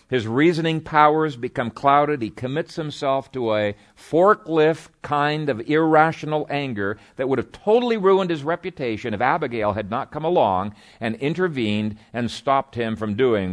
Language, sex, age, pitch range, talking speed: English, male, 50-69, 110-165 Hz, 155 wpm